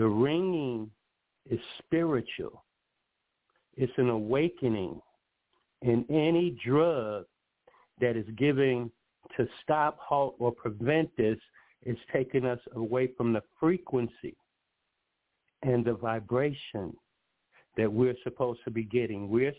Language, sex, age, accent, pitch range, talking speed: English, male, 60-79, American, 115-135 Hz, 110 wpm